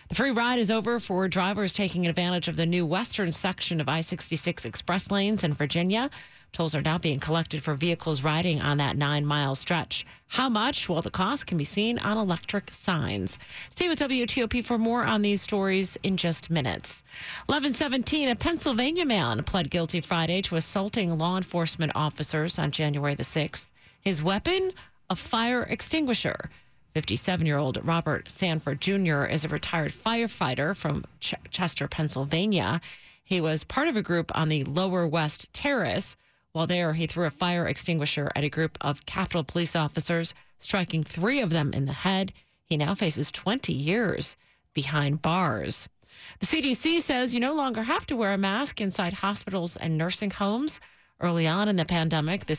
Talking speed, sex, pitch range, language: 170 wpm, female, 155-205 Hz, English